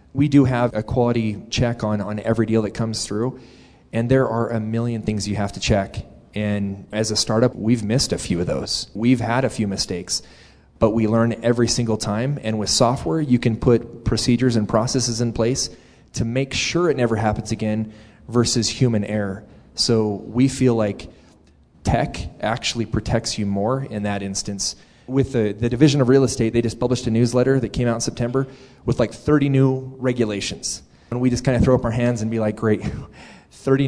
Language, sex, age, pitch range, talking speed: English, male, 30-49, 105-130 Hz, 200 wpm